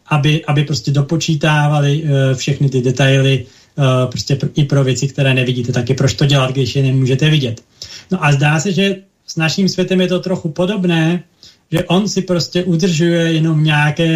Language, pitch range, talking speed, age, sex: Slovak, 130-160 Hz, 165 wpm, 30-49, male